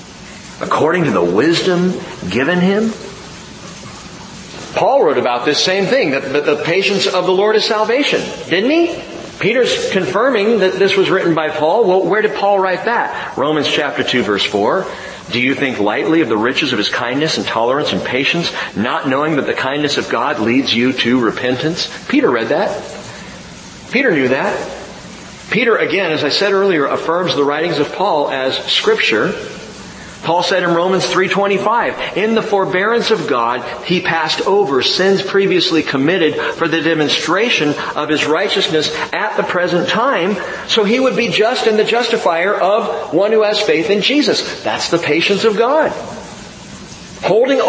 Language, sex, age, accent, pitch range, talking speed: English, male, 40-59, American, 165-220 Hz, 165 wpm